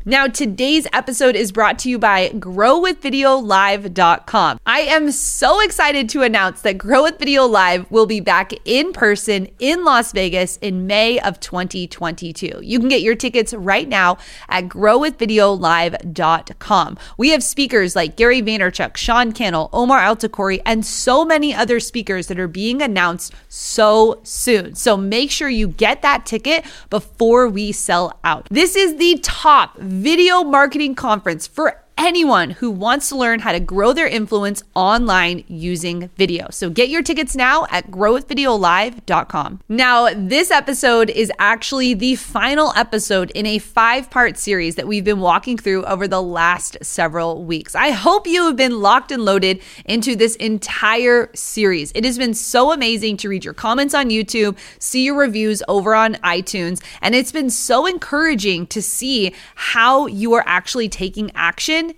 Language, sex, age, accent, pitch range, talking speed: English, female, 30-49, American, 190-260 Hz, 160 wpm